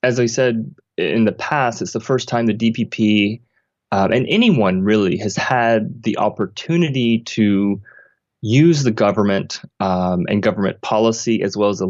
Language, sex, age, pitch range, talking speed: English, male, 20-39, 100-120 Hz, 160 wpm